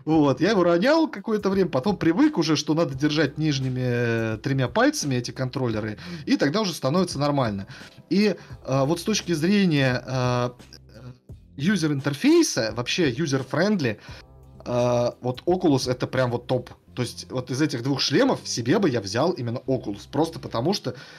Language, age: Russian, 30-49